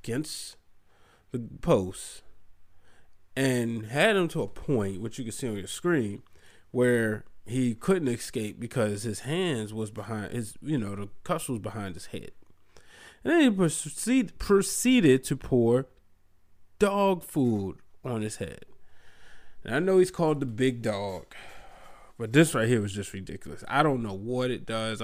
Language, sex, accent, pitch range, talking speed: English, male, American, 105-130 Hz, 160 wpm